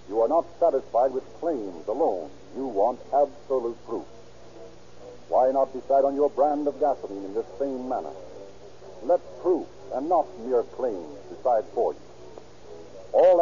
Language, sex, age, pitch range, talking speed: English, male, 50-69, 130-170 Hz, 150 wpm